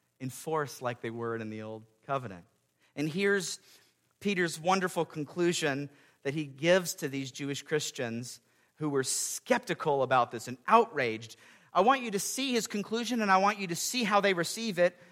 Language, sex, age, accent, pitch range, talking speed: English, male, 50-69, American, 160-270 Hz, 175 wpm